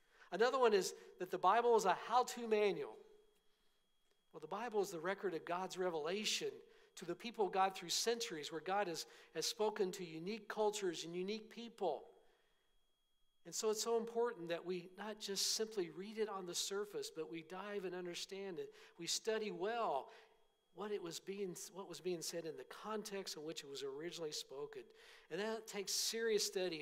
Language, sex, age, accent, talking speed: English, male, 50-69, American, 185 wpm